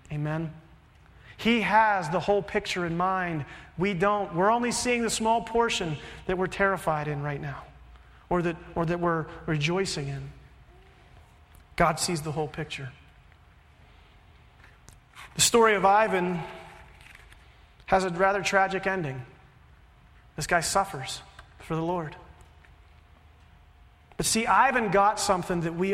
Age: 40-59